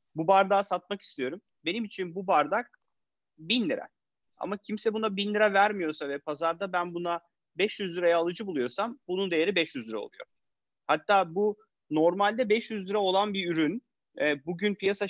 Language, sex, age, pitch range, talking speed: Turkish, male, 40-59, 165-205 Hz, 155 wpm